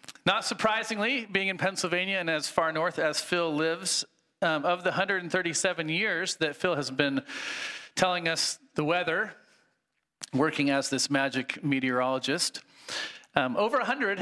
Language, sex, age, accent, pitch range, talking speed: English, male, 40-59, American, 145-185 Hz, 140 wpm